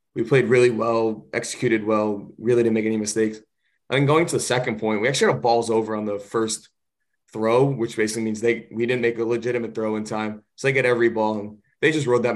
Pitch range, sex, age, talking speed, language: 110-125 Hz, male, 20-39, 245 wpm, English